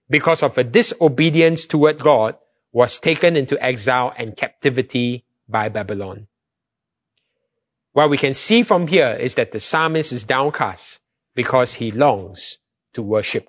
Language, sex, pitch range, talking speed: English, male, 125-175 Hz, 140 wpm